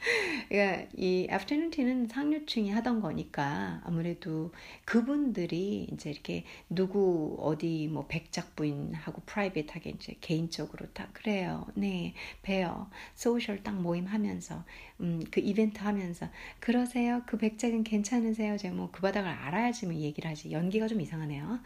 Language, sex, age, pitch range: Korean, female, 60-79, 165-245 Hz